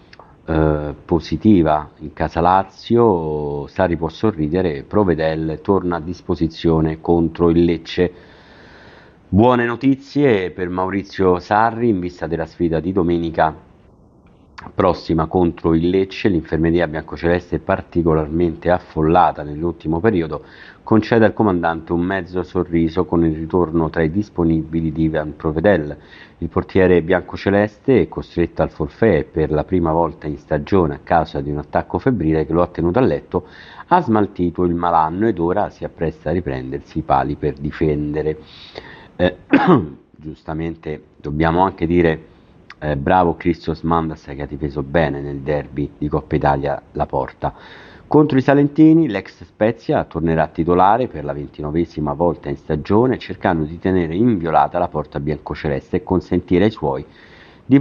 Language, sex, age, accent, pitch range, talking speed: Italian, male, 50-69, native, 80-90 Hz, 140 wpm